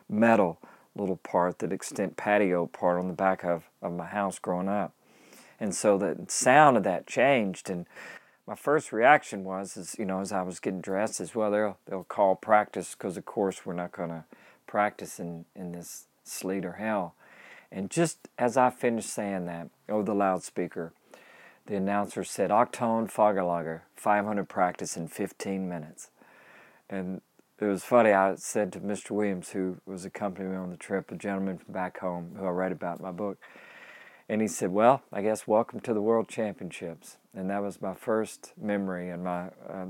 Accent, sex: American, male